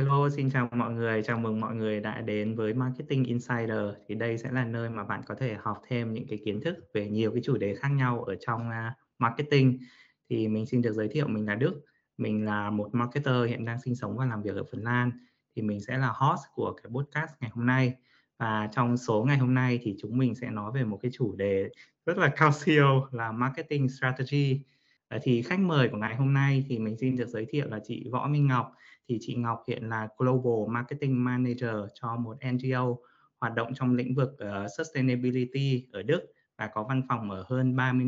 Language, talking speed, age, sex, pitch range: Vietnamese, 220 wpm, 20-39, male, 110-130 Hz